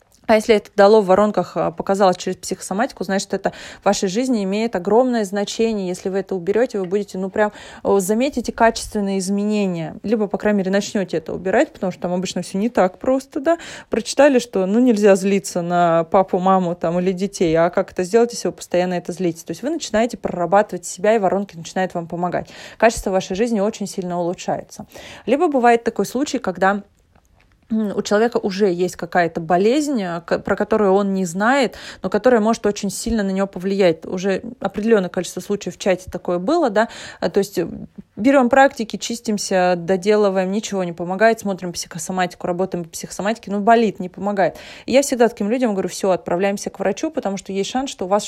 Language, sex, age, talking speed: Russian, female, 20-39, 185 wpm